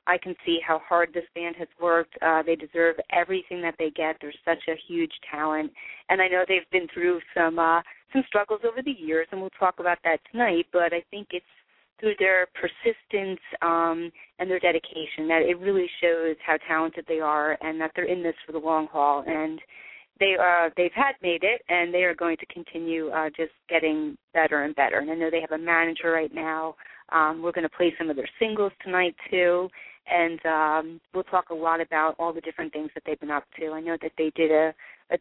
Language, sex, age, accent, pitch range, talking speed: English, female, 30-49, American, 160-185 Hz, 220 wpm